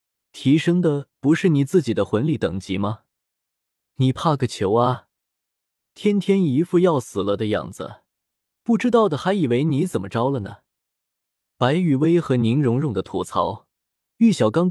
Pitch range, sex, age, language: 110-165 Hz, male, 20-39, Chinese